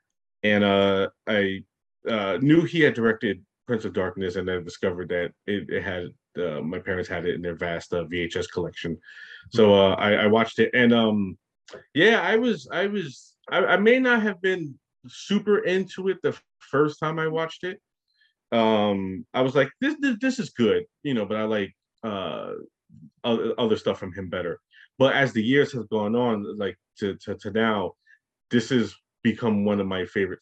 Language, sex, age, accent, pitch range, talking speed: English, male, 30-49, American, 95-155 Hz, 190 wpm